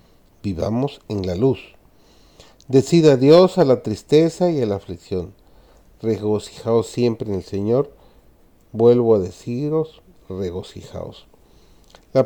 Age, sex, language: 40-59, male, Spanish